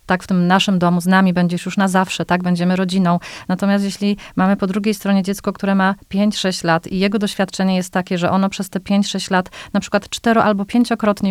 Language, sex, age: Polish, female, 30-49